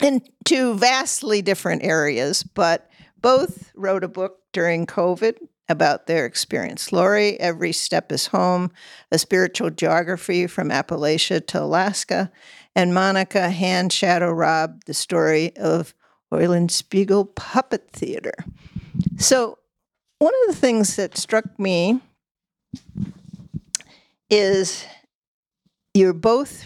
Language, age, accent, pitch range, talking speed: English, 50-69, American, 175-230 Hz, 115 wpm